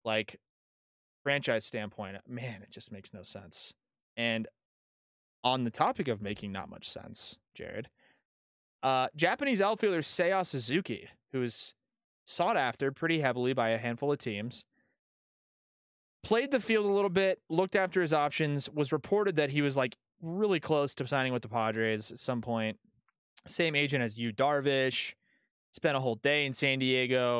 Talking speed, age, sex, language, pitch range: 160 wpm, 20-39, male, English, 115-155 Hz